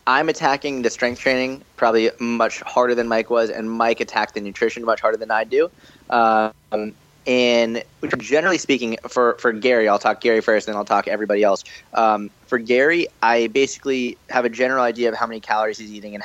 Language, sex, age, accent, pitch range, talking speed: English, male, 20-39, American, 110-130 Hz, 200 wpm